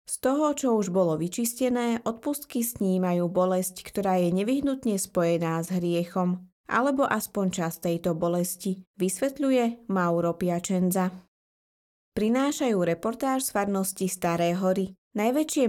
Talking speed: 115 wpm